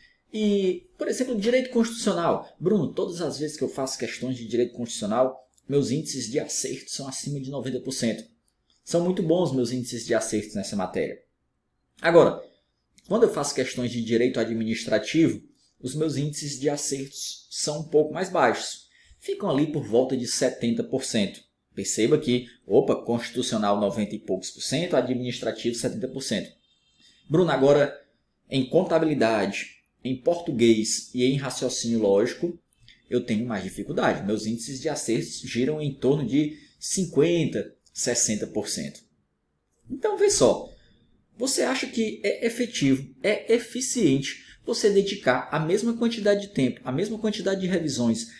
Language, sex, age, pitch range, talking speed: Portuguese, male, 20-39, 120-180 Hz, 140 wpm